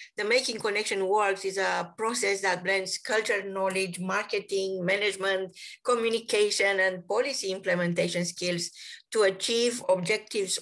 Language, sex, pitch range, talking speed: English, female, 185-230 Hz, 120 wpm